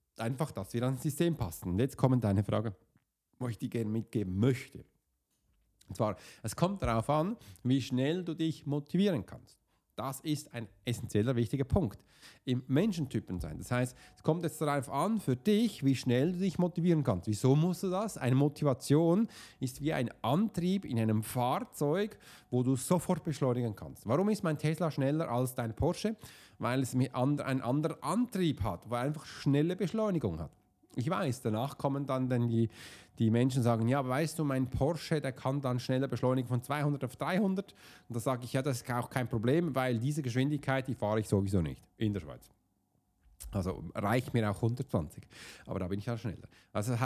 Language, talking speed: German, 190 wpm